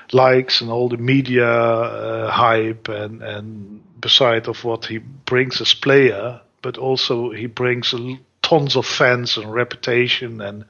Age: 40-59